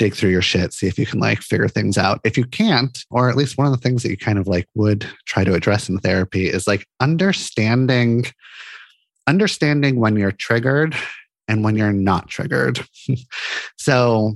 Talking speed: 190 wpm